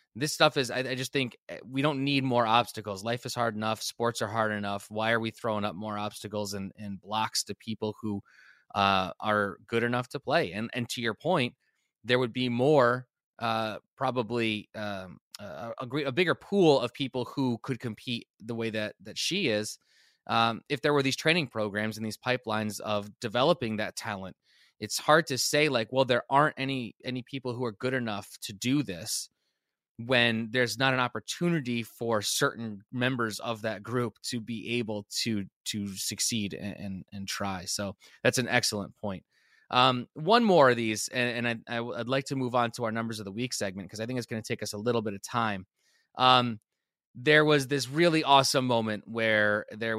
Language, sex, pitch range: English, male, 105-130 Hz